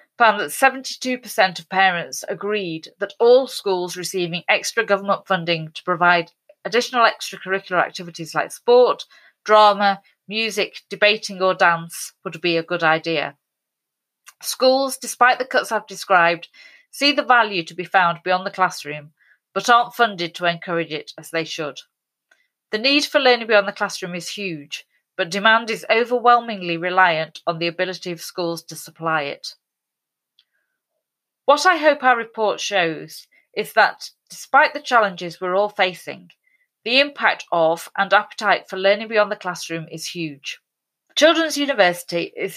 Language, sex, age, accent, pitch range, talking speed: English, female, 30-49, British, 170-235 Hz, 150 wpm